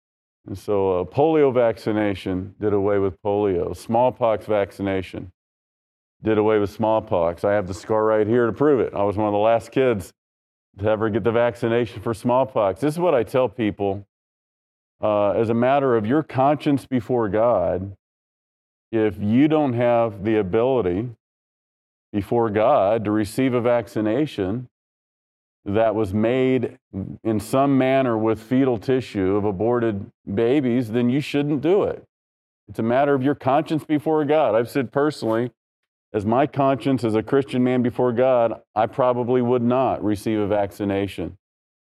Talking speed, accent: 155 wpm, American